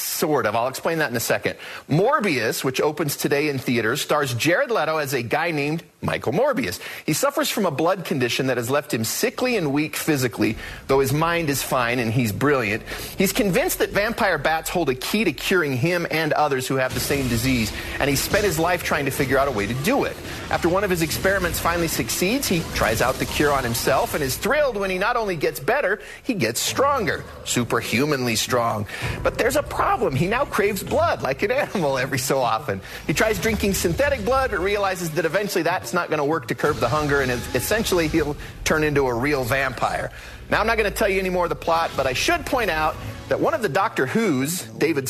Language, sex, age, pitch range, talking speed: English, male, 30-49, 130-190 Hz, 225 wpm